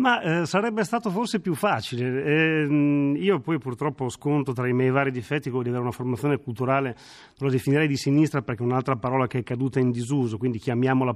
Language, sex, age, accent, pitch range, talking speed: Italian, male, 40-59, native, 130-155 Hz, 205 wpm